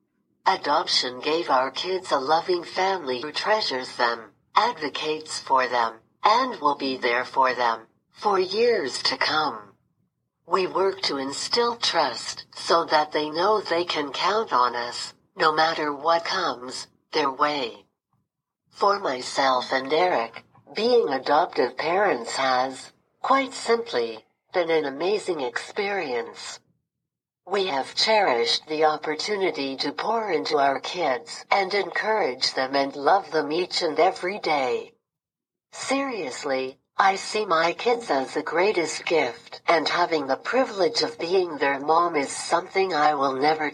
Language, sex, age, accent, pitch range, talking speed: English, female, 60-79, American, 130-195 Hz, 135 wpm